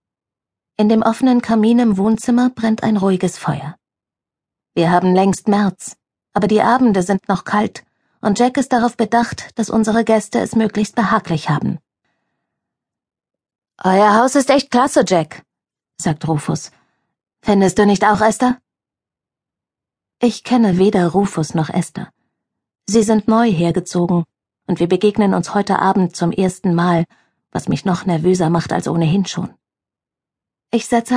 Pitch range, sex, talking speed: 180-225 Hz, female, 140 wpm